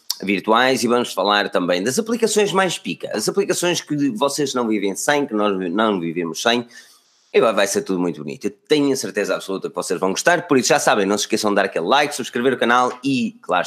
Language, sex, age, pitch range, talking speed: Portuguese, male, 20-39, 95-140 Hz, 230 wpm